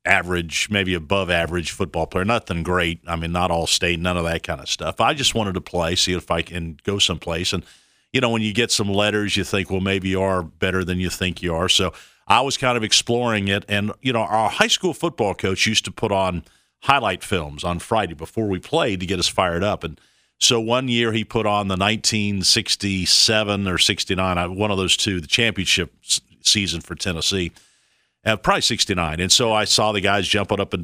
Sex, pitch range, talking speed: male, 90-110 Hz, 220 wpm